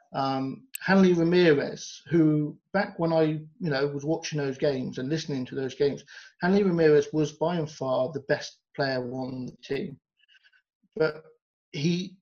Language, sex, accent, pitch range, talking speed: English, male, British, 145-180 Hz, 155 wpm